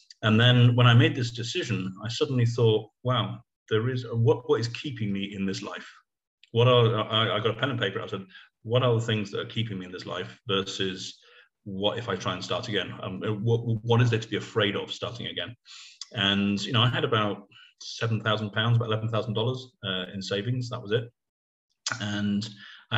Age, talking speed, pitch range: 30-49, 205 wpm, 100-120 Hz